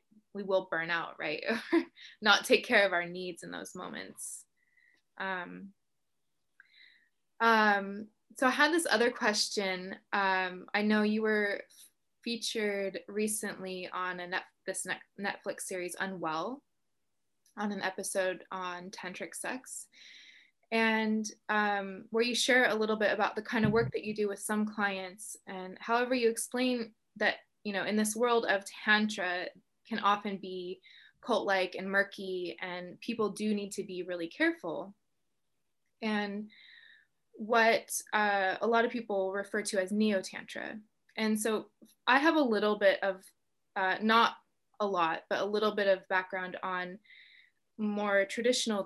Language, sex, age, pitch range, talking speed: English, female, 20-39, 190-230 Hz, 150 wpm